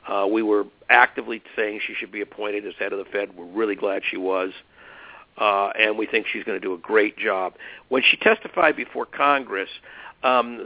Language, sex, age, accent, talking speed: English, male, 50-69, American, 205 wpm